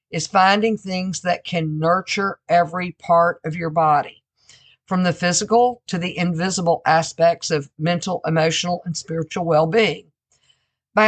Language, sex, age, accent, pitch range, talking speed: English, female, 50-69, American, 160-200 Hz, 135 wpm